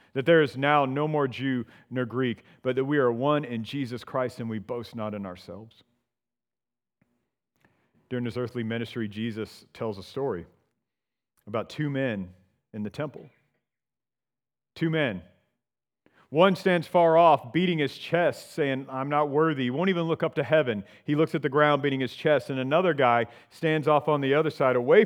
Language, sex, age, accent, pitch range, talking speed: English, male, 40-59, American, 110-150 Hz, 180 wpm